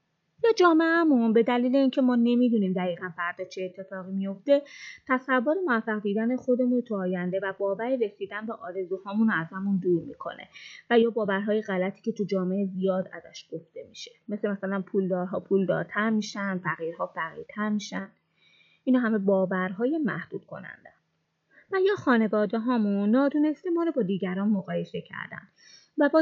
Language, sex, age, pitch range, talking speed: Persian, female, 20-39, 195-240 Hz, 150 wpm